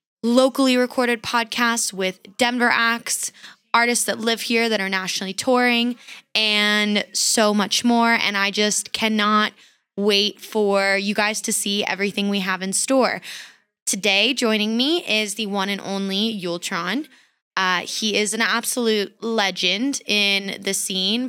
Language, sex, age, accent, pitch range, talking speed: English, female, 20-39, American, 195-235 Hz, 145 wpm